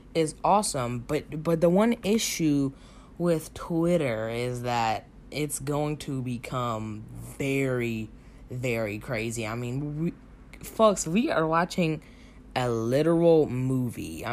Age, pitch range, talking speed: 10-29, 125-165 Hz, 115 wpm